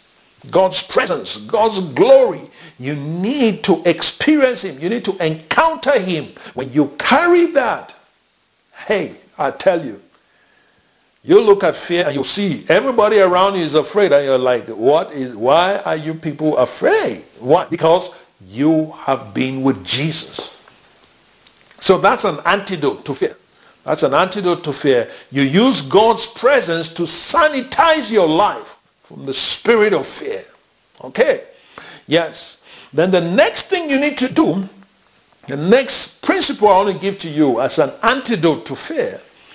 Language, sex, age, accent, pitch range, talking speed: English, male, 60-79, Nigerian, 165-270 Hz, 150 wpm